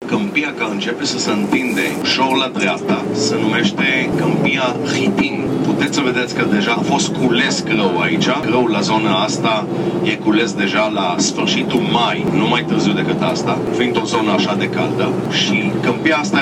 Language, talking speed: Romanian, 175 wpm